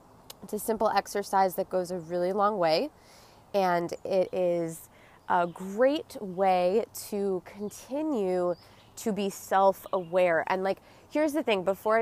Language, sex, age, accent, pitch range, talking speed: English, female, 20-39, American, 190-225 Hz, 135 wpm